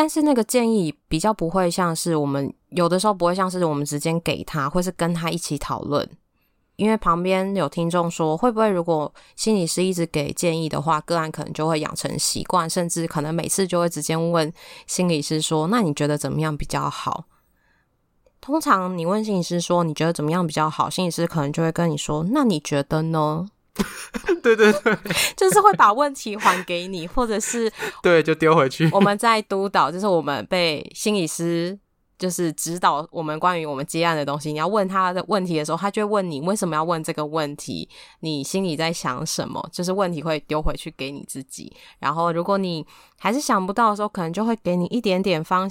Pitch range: 155-195 Hz